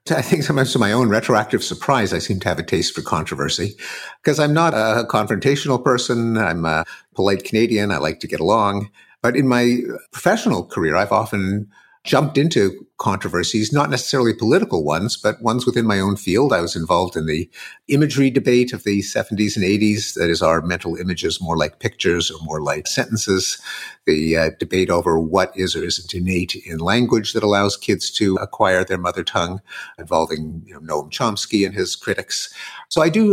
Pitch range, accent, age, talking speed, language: 95-130 Hz, American, 50-69, 185 wpm, English